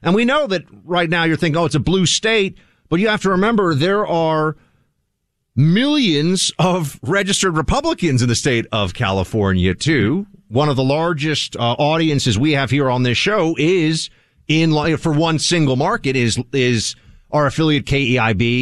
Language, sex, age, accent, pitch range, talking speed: English, male, 40-59, American, 120-170 Hz, 170 wpm